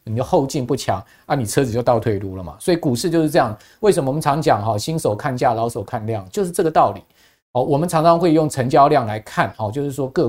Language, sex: Chinese, male